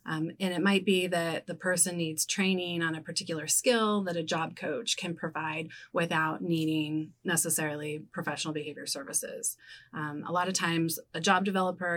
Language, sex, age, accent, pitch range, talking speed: English, female, 30-49, American, 160-185 Hz, 170 wpm